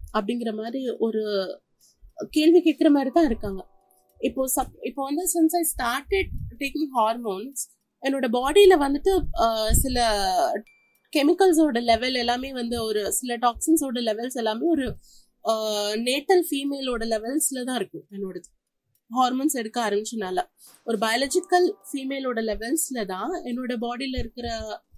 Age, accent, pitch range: 30-49, native, 225-310 Hz